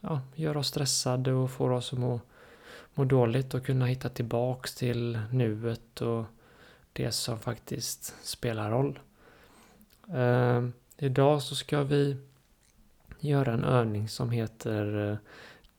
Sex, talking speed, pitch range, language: male, 130 wpm, 115-130 Hz, Swedish